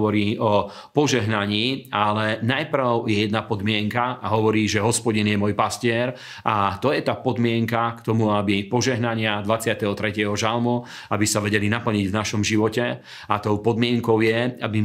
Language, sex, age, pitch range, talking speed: Slovak, male, 40-59, 105-120 Hz, 155 wpm